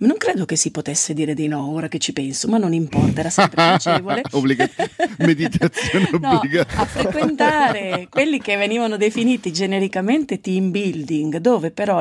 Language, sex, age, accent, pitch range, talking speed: Italian, female, 40-59, native, 160-190 Hz, 160 wpm